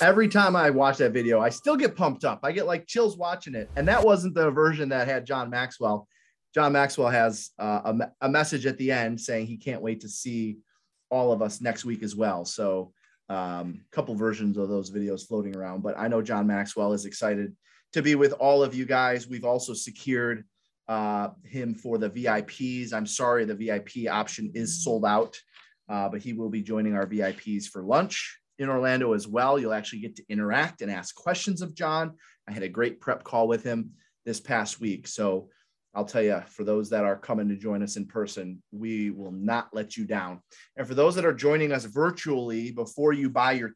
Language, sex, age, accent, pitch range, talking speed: English, male, 30-49, American, 105-140 Hz, 215 wpm